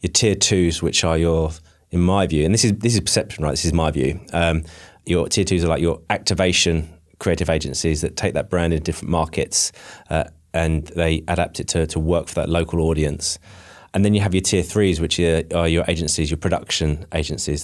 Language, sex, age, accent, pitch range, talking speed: English, male, 30-49, British, 80-90 Hz, 220 wpm